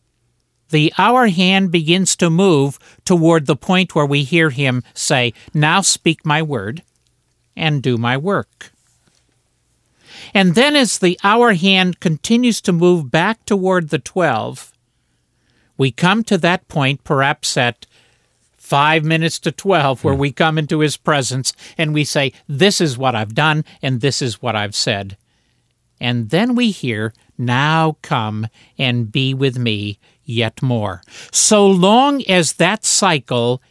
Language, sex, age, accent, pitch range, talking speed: English, male, 50-69, American, 120-175 Hz, 150 wpm